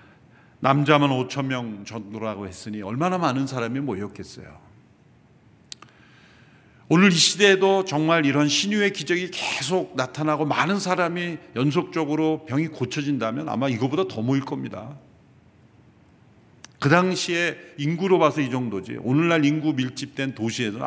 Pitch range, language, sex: 105-155 Hz, Korean, male